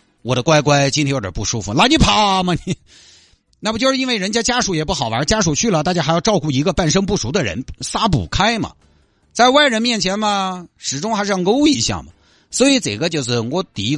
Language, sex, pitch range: Chinese, male, 100-165 Hz